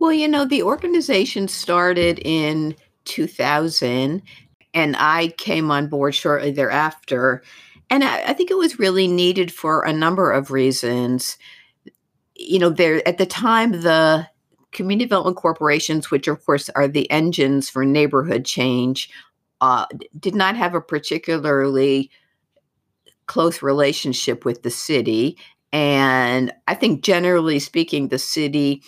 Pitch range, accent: 140-175 Hz, American